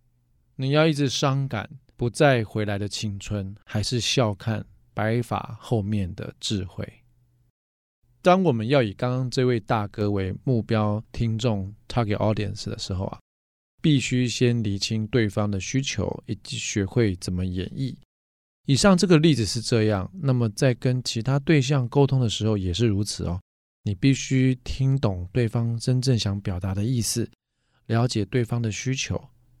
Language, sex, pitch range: Chinese, male, 105-130 Hz